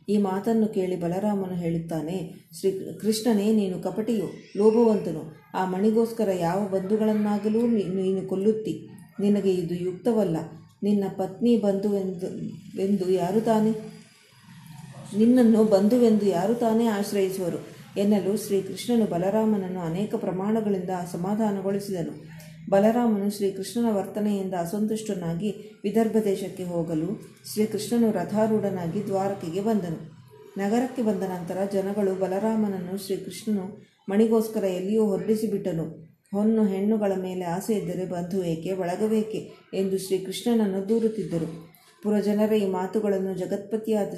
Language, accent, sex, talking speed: Kannada, native, female, 95 wpm